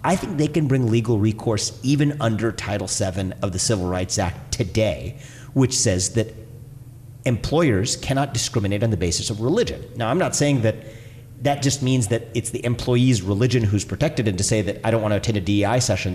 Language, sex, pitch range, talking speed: English, male, 105-135 Hz, 205 wpm